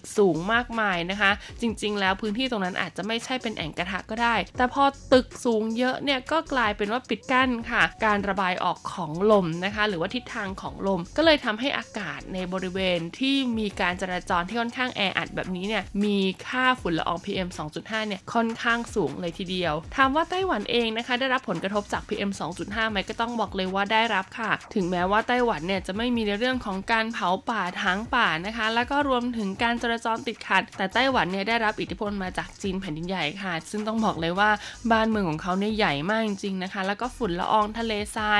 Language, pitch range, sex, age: Thai, 190-240 Hz, female, 20-39